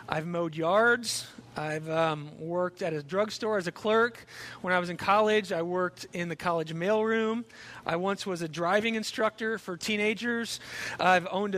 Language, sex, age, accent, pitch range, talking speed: English, male, 40-59, American, 165-220 Hz, 170 wpm